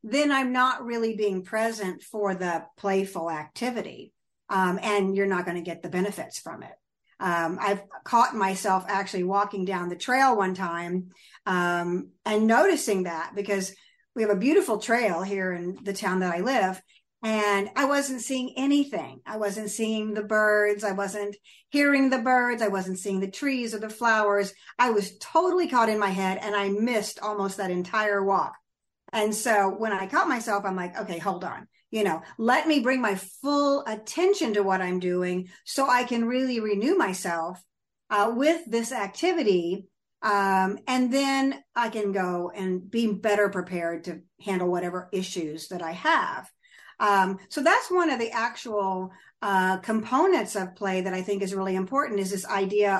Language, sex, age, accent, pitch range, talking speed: English, female, 50-69, American, 190-235 Hz, 175 wpm